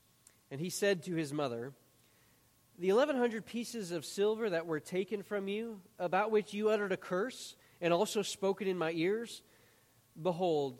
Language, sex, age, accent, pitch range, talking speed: English, male, 30-49, American, 135-195 Hz, 165 wpm